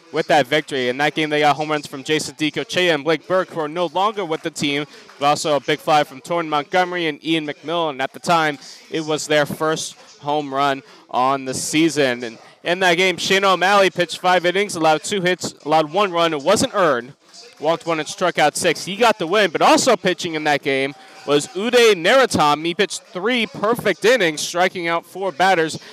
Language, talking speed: English, 215 wpm